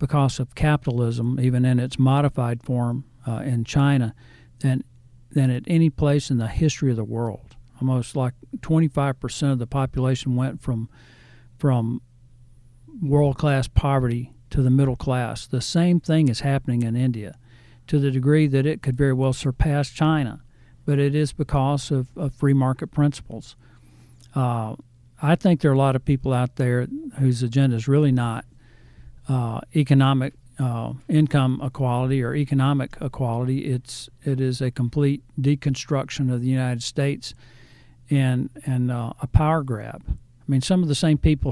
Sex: male